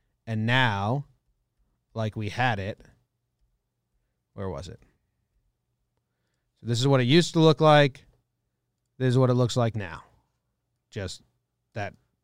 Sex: male